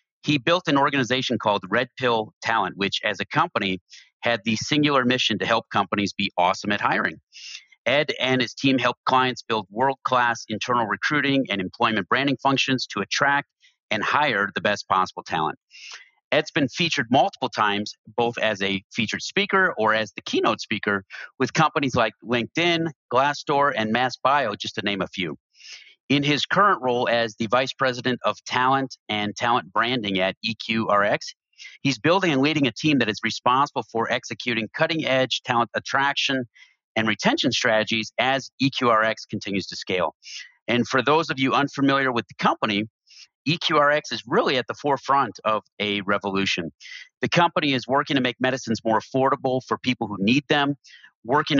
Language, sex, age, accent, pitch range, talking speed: English, male, 40-59, American, 110-140 Hz, 165 wpm